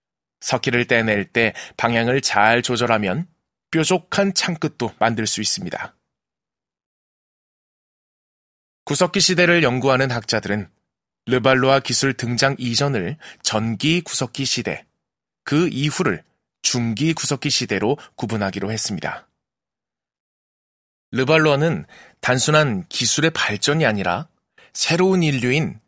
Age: 20-39